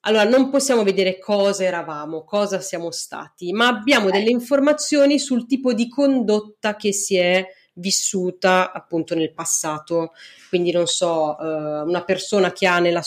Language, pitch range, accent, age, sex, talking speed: Italian, 185-230 Hz, native, 30-49, female, 150 wpm